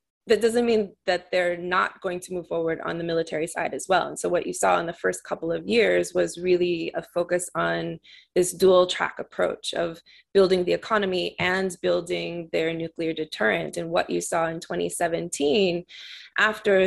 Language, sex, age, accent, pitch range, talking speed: English, female, 20-39, American, 165-190 Hz, 185 wpm